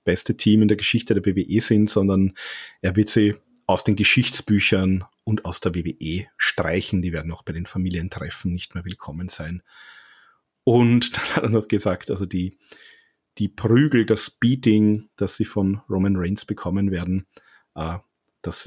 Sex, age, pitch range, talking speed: male, 40-59, 90-110 Hz, 160 wpm